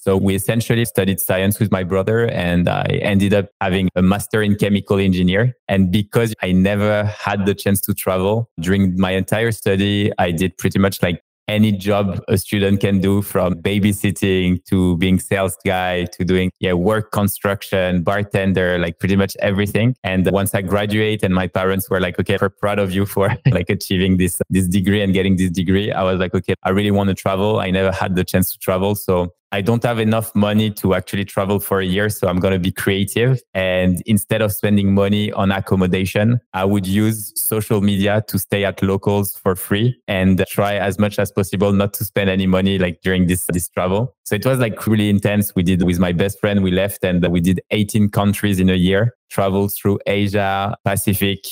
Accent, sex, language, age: French, male, English, 20-39